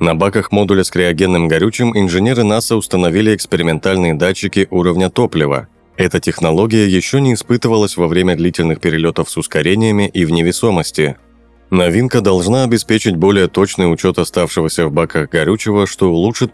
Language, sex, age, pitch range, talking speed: Russian, male, 30-49, 85-105 Hz, 140 wpm